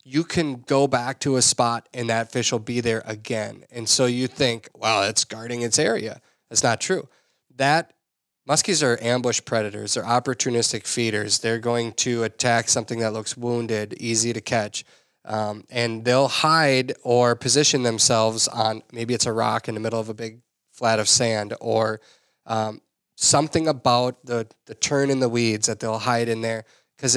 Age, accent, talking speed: 20-39, American, 180 wpm